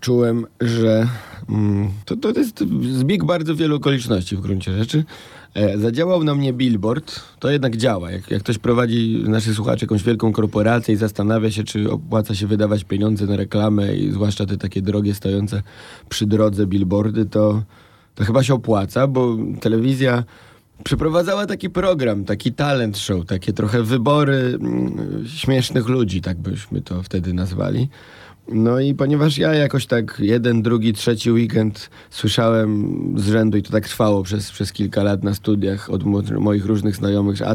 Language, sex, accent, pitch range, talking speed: Polish, male, native, 100-120 Hz, 160 wpm